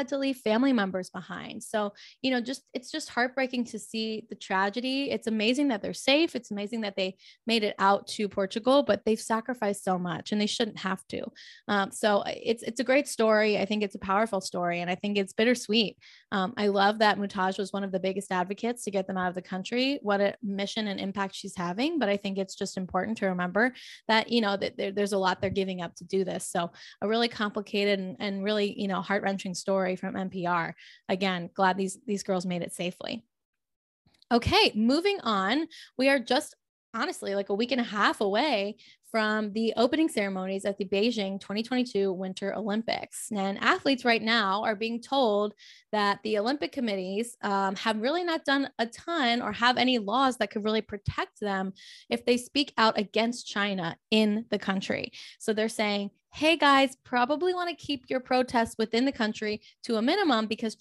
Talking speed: 200 wpm